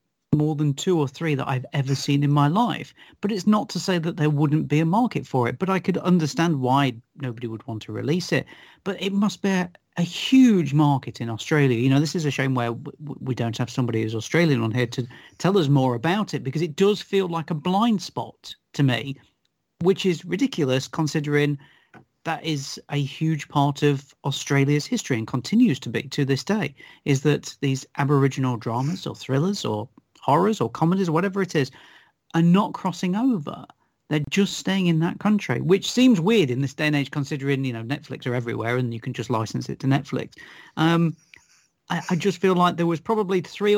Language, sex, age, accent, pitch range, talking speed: English, male, 40-59, British, 135-180 Hz, 210 wpm